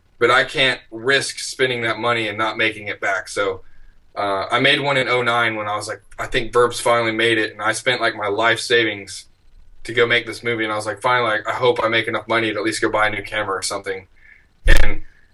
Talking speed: 245 wpm